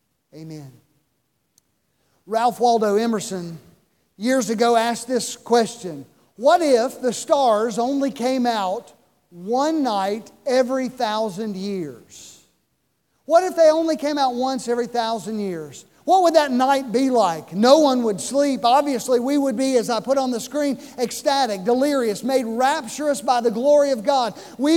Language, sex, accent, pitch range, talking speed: English, male, American, 200-280 Hz, 150 wpm